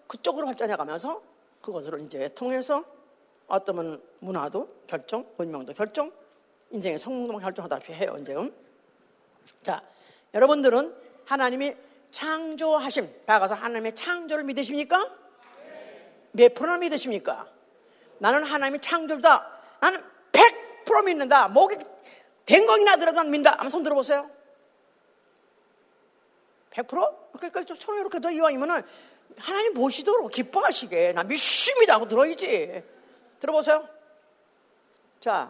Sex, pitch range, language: female, 250-350 Hz, Korean